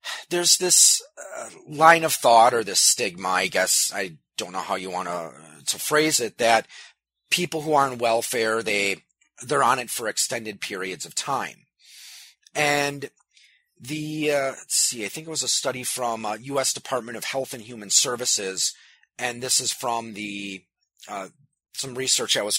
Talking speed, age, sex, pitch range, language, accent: 180 wpm, 30-49, male, 110-150 Hz, English, American